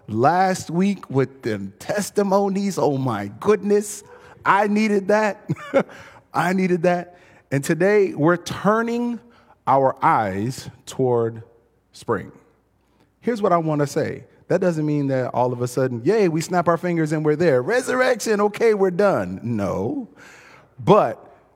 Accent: American